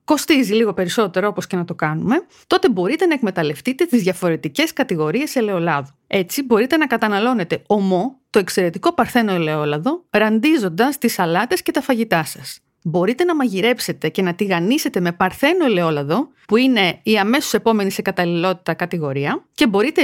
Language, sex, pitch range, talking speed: Greek, female, 175-260 Hz, 155 wpm